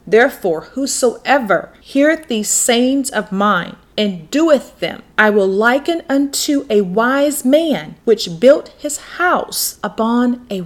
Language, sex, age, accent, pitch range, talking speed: English, female, 30-49, American, 205-285 Hz, 130 wpm